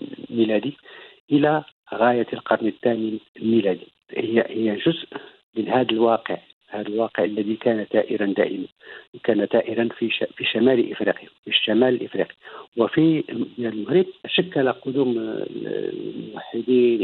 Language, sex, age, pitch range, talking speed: Arabic, male, 50-69, 115-130 Hz, 115 wpm